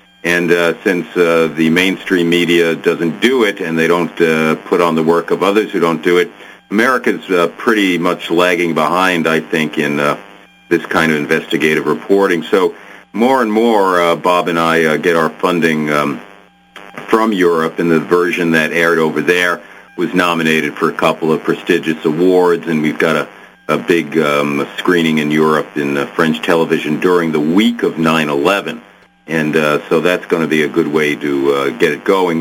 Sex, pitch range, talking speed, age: male, 80-90 Hz, 190 wpm, 50-69